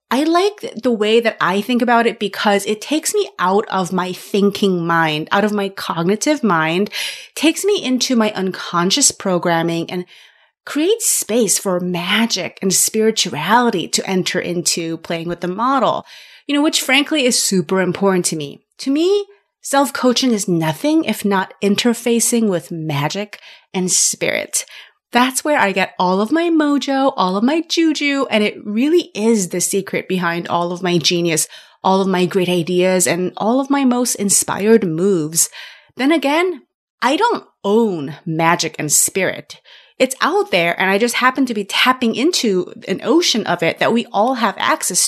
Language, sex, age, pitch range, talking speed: English, female, 30-49, 180-255 Hz, 170 wpm